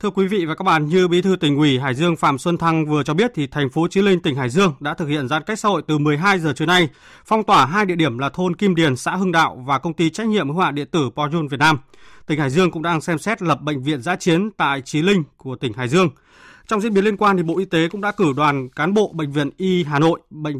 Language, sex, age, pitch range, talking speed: Vietnamese, male, 20-39, 145-185 Hz, 300 wpm